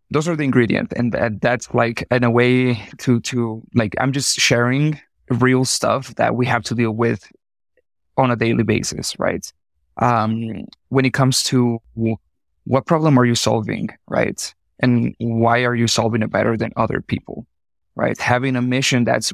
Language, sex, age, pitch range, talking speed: English, male, 20-39, 115-130 Hz, 175 wpm